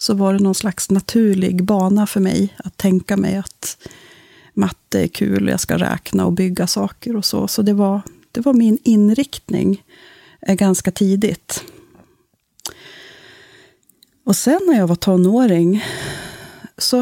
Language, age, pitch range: Swedish, 30-49, 180-210 Hz